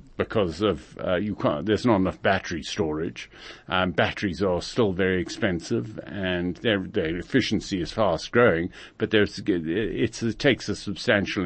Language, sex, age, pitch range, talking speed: English, male, 50-69, 90-115 Hz, 155 wpm